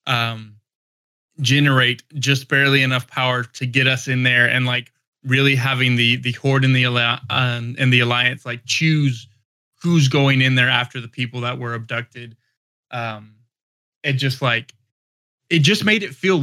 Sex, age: male, 20-39